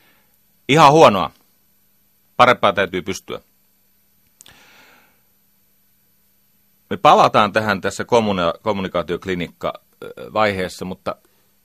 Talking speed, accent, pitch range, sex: 55 wpm, native, 85-100 Hz, male